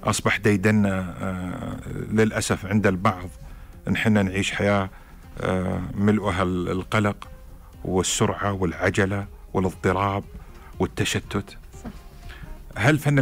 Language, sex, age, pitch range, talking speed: Arabic, male, 50-69, 90-110 Hz, 75 wpm